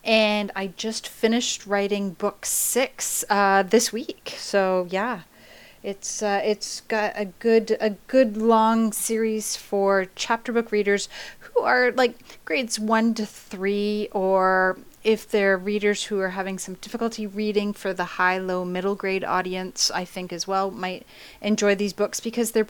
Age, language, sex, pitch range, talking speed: 30-49, English, female, 185-215 Hz, 160 wpm